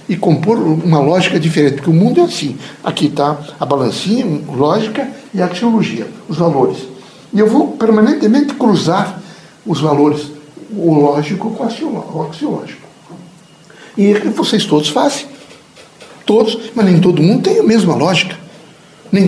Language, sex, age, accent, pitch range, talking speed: Portuguese, male, 60-79, Brazilian, 155-225 Hz, 145 wpm